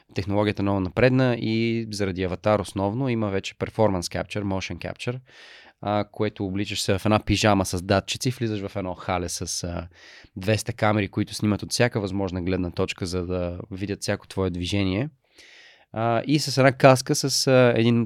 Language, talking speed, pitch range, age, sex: Bulgarian, 175 wpm, 100-120 Hz, 20-39, male